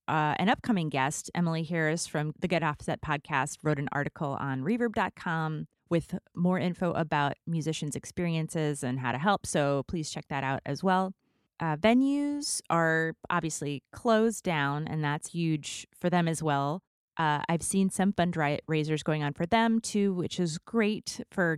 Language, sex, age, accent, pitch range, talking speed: English, female, 30-49, American, 150-185 Hz, 165 wpm